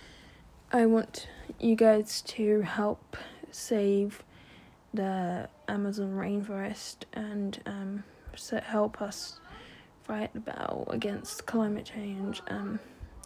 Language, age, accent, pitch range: English, 10-29, British, 205-225 Hz